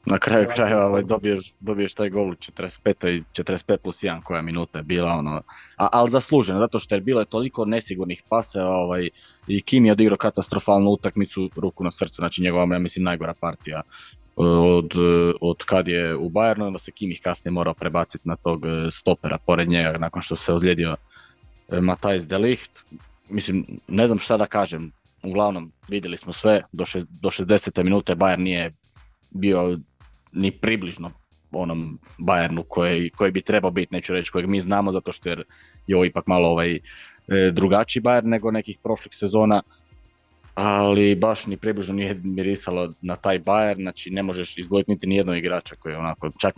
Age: 20-39